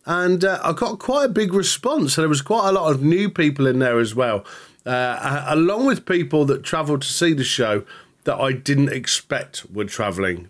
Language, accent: English, British